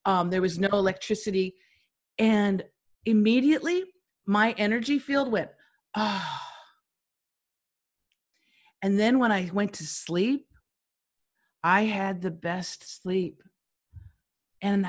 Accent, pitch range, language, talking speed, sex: American, 180-230 Hz, English, 100 wpm, female